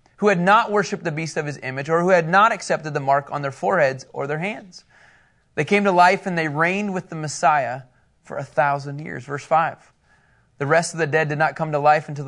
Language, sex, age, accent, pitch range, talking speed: English, male, 30-49, American, 140-180 Hz, 240 wpm